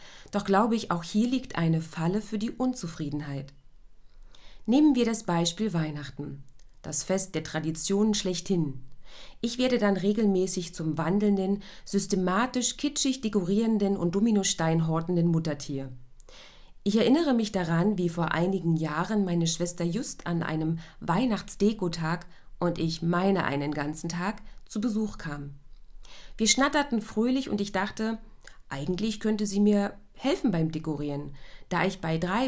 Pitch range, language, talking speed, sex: 160-215 Hz, German, 135 wpm, female